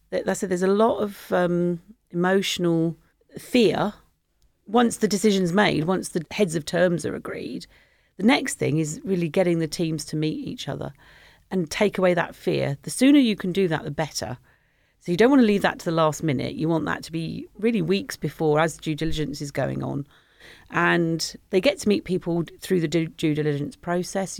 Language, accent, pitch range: English, British, 155-185 Hz